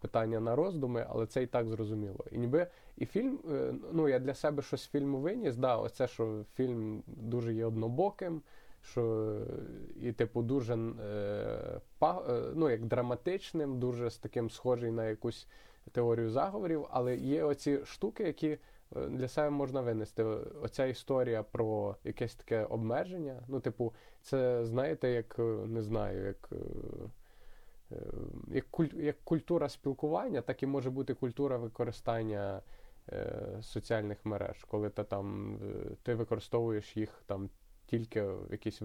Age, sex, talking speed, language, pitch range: 20-39, male, 135 wpm, Ukrainian, 110-135 Hz